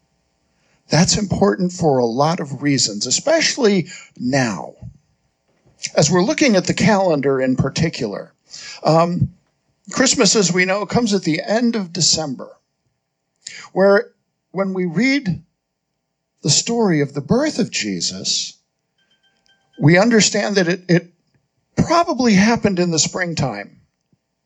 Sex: male